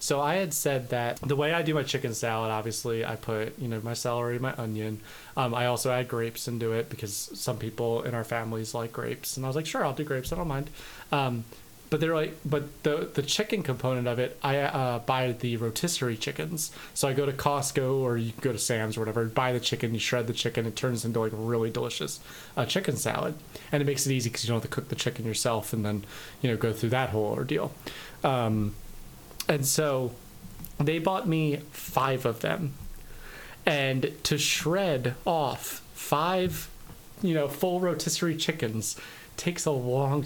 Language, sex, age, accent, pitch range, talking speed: English, male, 20-39, American, 120-150 Hz, 205 wpm